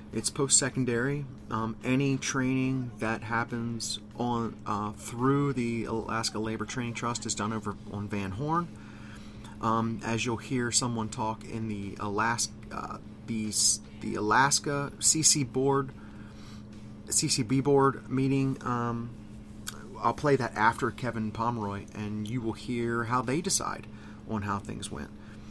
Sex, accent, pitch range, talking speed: male, American, 105-125 Hz, 135 wpm